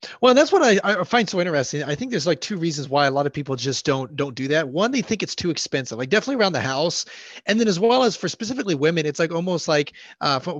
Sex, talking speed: male, 280 wpm